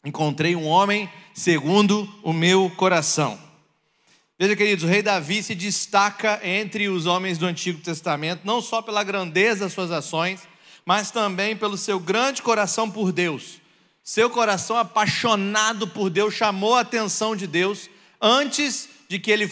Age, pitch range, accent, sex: 40-59, 195-240 Hz, Brazilian, male